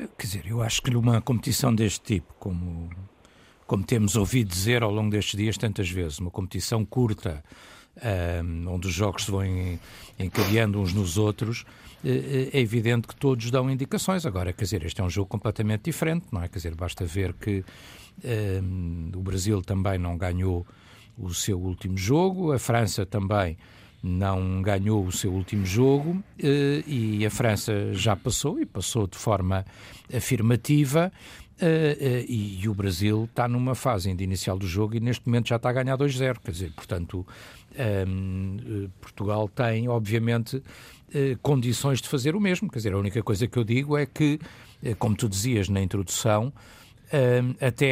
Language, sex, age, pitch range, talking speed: Portuguese, male, 60-79, 95-125 Hz, 160 wpm